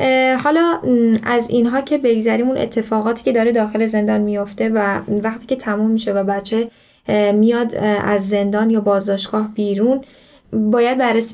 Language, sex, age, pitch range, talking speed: Persian, female, 10-29, 205-230 Hz, 145 wpm